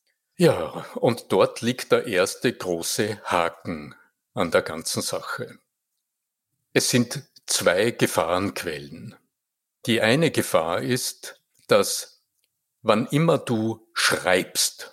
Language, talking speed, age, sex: German, 100 wpm, 60-79, male